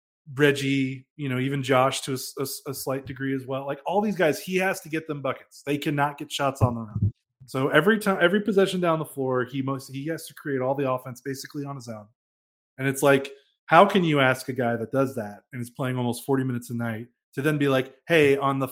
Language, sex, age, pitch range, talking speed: English, male, 30-49, 125-150 Hz, 250 wpm